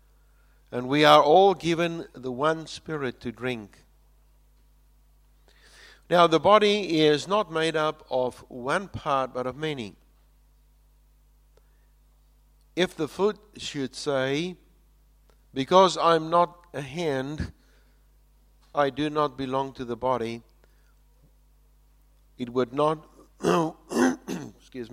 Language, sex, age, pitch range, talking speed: English, male, 60-79, 115-165 Hz, 105 wpm